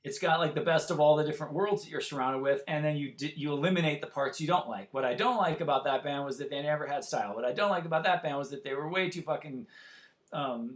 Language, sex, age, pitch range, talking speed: English, male, 40-59, 145-180 Hz, 295 wpm